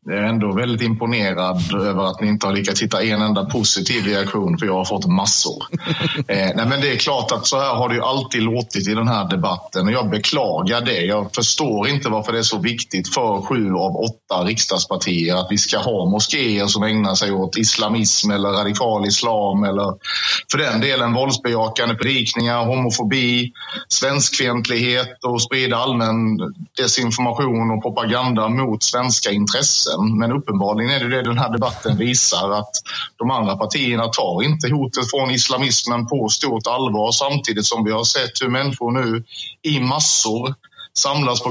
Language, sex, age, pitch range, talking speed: Swedish, male, 30-49, 105-130 Hz, 170 wpm